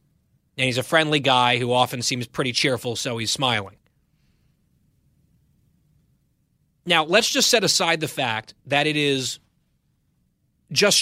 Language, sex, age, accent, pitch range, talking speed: English, male, 30-49, American, 140-190 Hz, 130 wpm